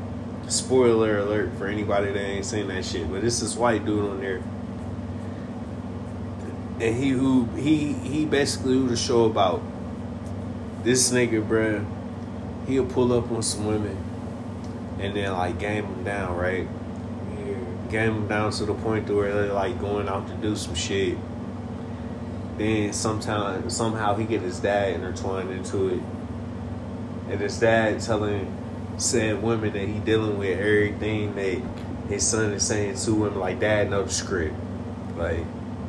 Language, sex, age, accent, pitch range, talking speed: English, male, 20-39, American, 100-115 Hz, 155 wpm